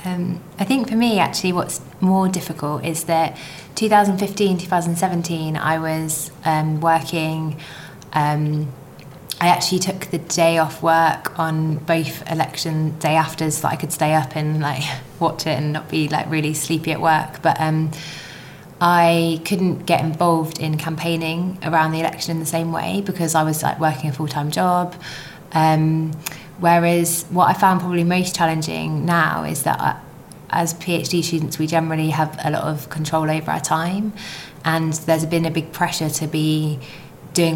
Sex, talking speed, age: female, 165 wpm, 20-39